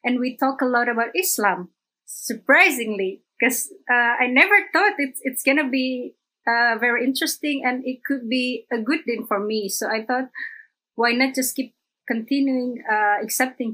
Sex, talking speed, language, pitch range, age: female, 180 wpm, English, 220-265 Hz, 20-39